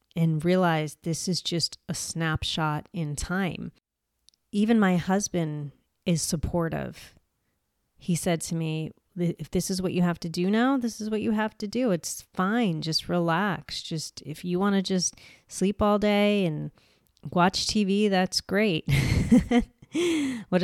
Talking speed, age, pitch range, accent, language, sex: 150 wpm, 30-49, 160-185 Hz, American, English, female